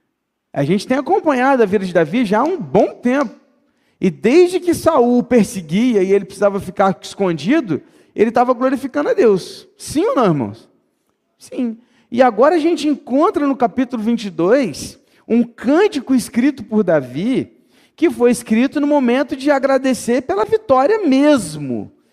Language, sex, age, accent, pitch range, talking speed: Portuguese, male, 40-59, Brazilian, 210-275 Hz, 155 wpm